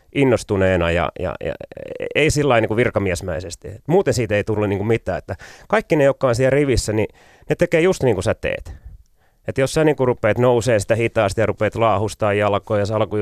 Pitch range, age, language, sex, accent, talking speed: 105-145 Hz, 30-49, Finnish, male, native, 205 wpm